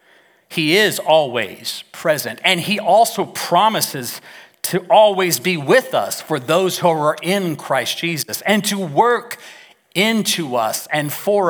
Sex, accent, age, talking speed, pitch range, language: male, American, 40-59, 140 wpm, 170-230 Hz, English